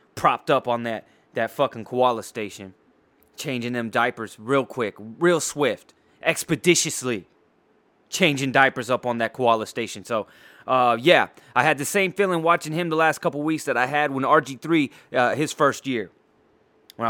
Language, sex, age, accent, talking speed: English, male, 20-39, American, 165 wpm